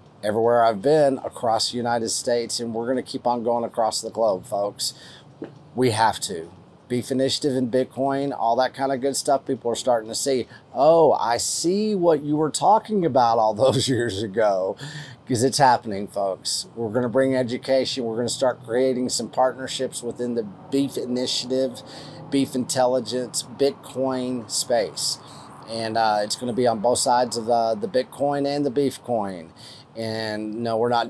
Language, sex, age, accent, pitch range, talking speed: English, male, 30-49, American, 115-135 Hz, 180 wpm